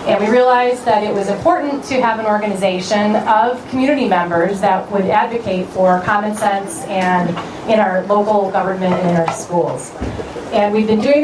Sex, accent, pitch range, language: female, American, 185-225 Hz, English